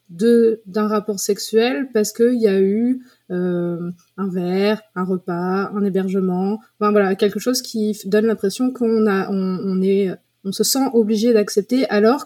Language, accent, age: French, French, 20-39